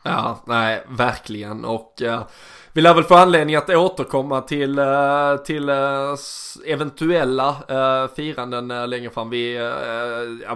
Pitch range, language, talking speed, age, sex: 120-140 Hz, Swedish, 140 wpm, 20-39, male